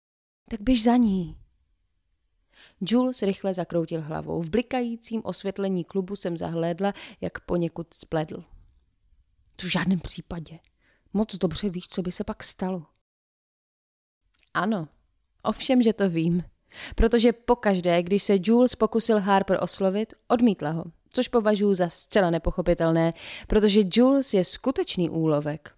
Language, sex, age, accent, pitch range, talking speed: Czech, female, 20-39, native, 165-235 Hz, 125 wpm